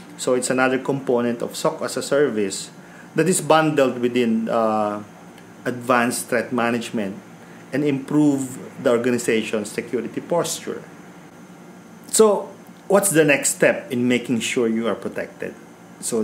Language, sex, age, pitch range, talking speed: English, male, 40-59, 105-130 Hz, 130 wpm